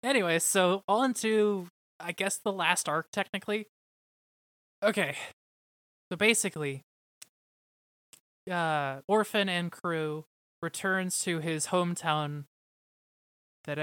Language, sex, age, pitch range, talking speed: English, male, 20-39, 150-190 Hz, 95 wpm